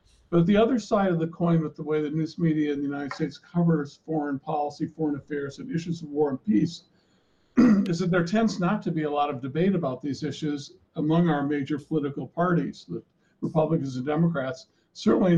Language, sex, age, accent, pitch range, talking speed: English, male, 50-69, American, 150-175 Hz, 205 wpm